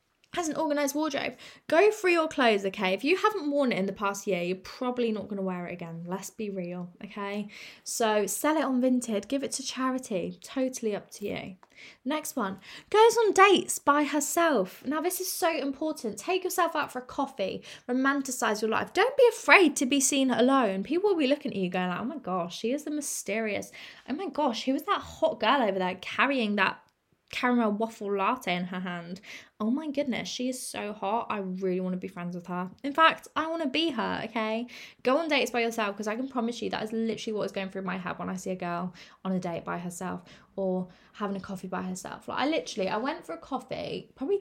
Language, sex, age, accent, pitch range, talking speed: English, female, 20-39, British, 195-285 Hz, 230 wpm